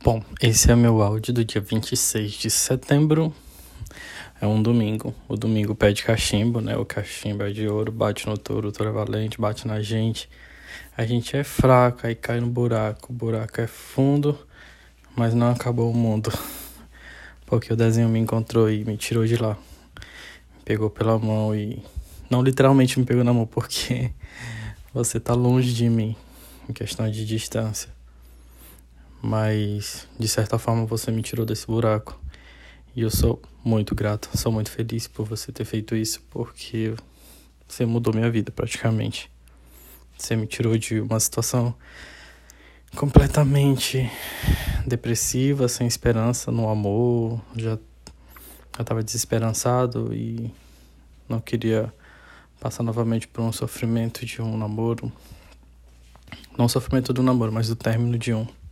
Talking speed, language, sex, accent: 150 wpm, Portuguese, male, Brazilian